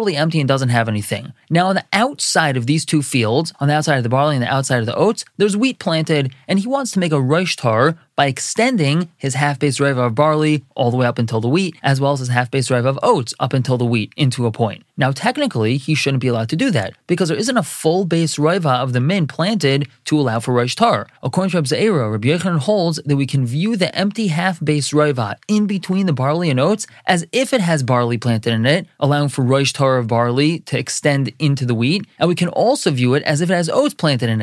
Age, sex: 20-39, male